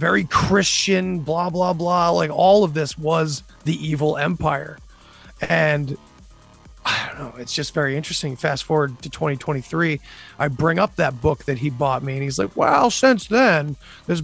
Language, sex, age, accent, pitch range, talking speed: English, male, 30-49, American, 145-185 Hz, 175 wpm